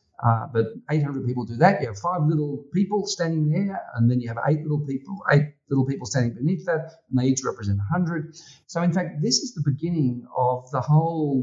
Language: English